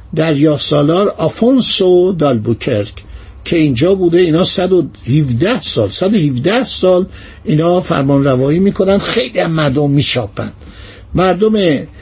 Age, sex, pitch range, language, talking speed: 60-79, male, 140-190 Hz, Persian, 110 wpm